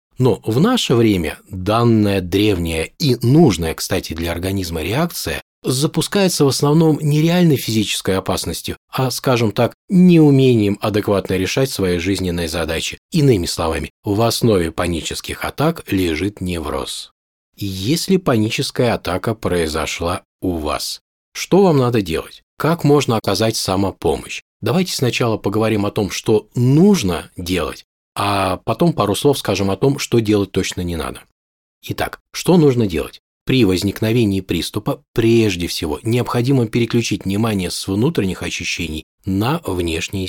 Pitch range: 95-130 Hz